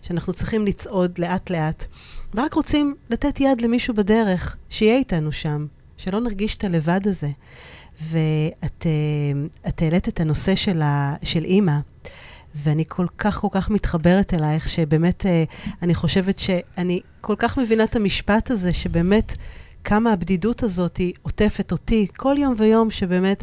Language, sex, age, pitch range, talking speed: Hebrew, female, 40-59, 170-220 Hz, 135 wpm